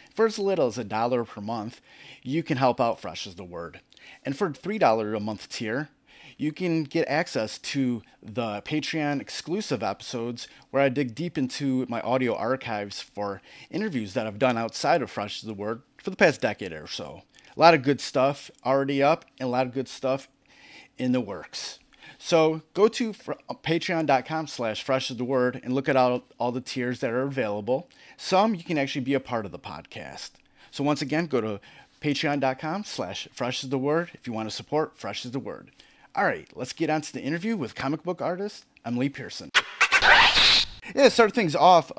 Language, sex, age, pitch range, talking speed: English, male, 30-49, 120-155 Hz, 195 wpm